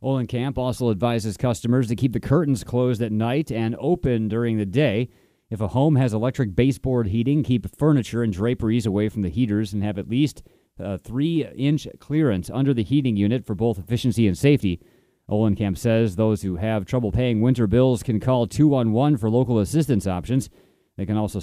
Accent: American